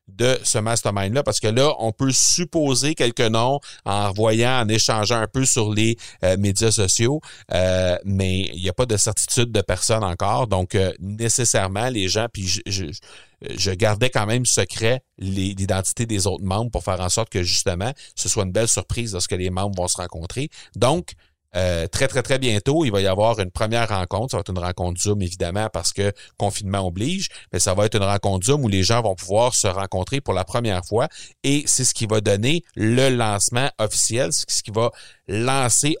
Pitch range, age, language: 95-125 Hz, 40-59, French